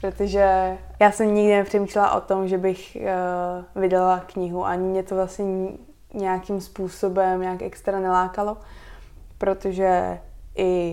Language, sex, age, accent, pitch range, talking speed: Czech, female, 20-39, native, 185-200 Hz, 125 wpm